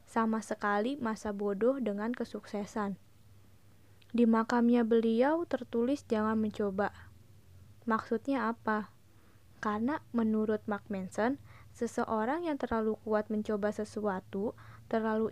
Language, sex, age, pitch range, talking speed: Malay, female, 20-39, 205-240 Hz, 100 wpm